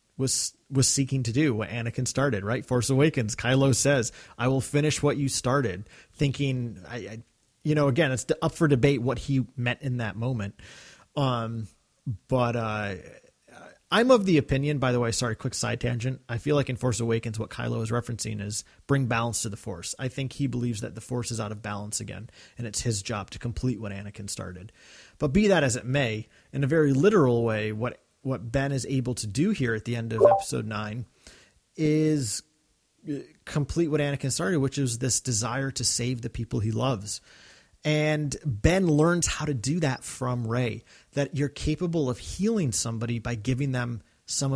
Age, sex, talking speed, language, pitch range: 30-49, male, 195 wpm, English, 115-140 Hz